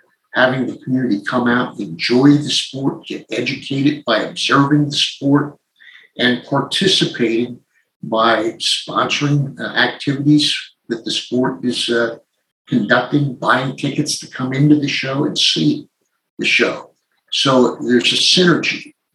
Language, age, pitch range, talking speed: English, 50-69, 125-150 Hz, 130 wpm